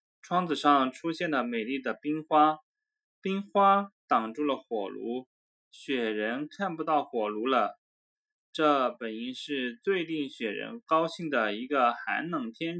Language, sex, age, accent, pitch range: Chinese, male, 20-39, native, 150-245 Hz